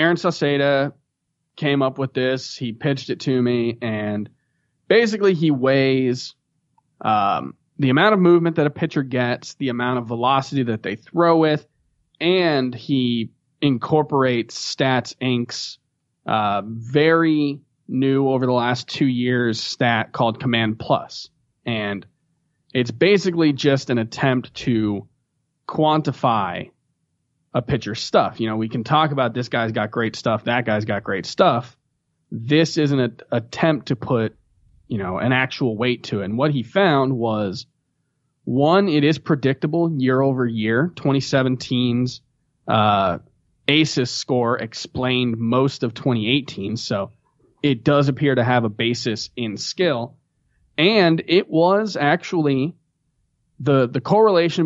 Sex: male